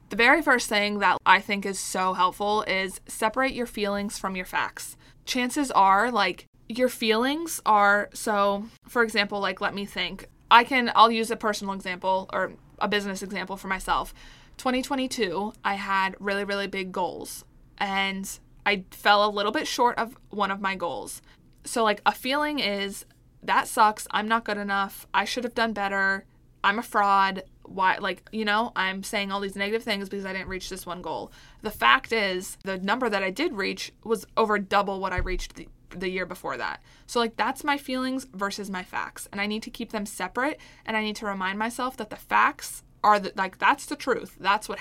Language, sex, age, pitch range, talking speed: English, female, 20-39, 195-230 Hz, 200 wpm